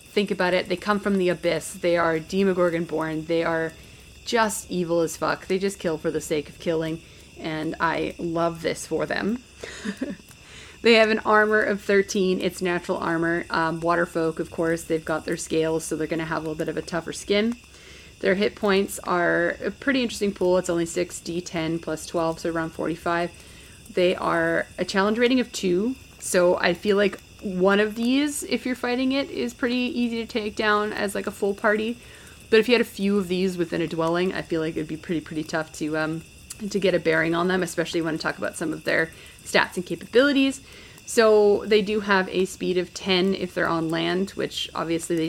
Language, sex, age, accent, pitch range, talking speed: English, female, 30-49, American, 160-205 Hz, 210 wpm